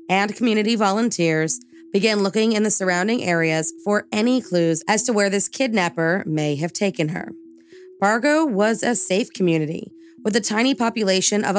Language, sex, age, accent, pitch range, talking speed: English, female, 20-39, American, 170-215 Hz, 160 wpm